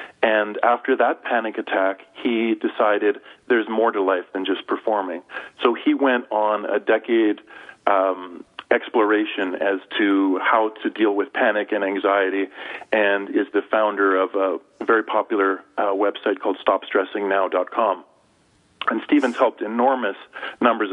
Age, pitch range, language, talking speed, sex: 40-59, 100-120 Hz, English, 140 wpm, male